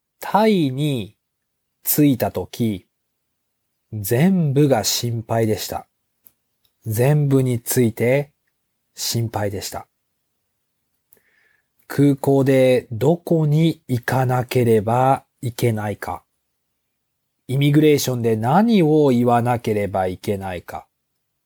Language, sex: Japanese, male